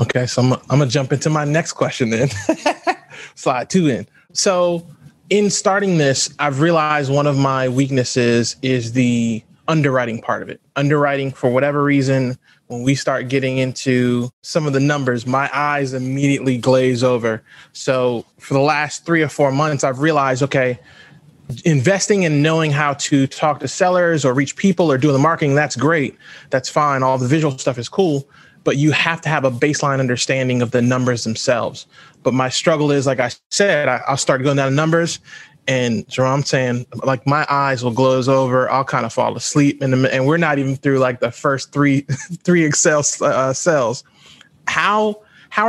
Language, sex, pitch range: English, male, 130-155 Hz